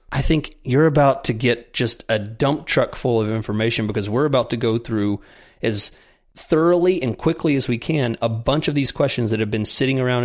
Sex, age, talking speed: male, 30-49, 210 wpm